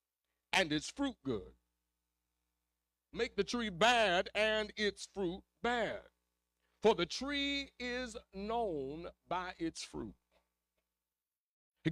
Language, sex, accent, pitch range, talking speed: English, male, American, 175-245 Hz, 105 wpm